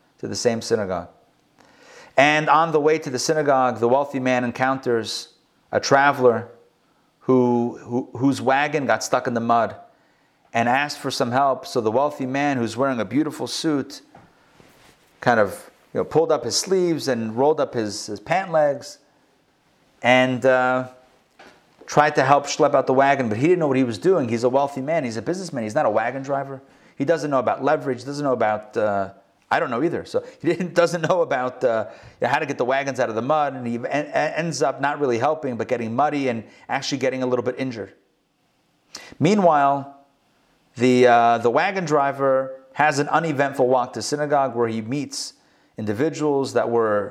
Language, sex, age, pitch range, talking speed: English, male, 30-49, 125-145 Hz, 190 wpm